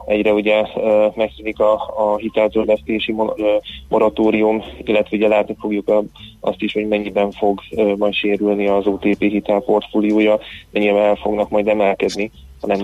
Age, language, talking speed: 20-39, Hungarian, 125 wpm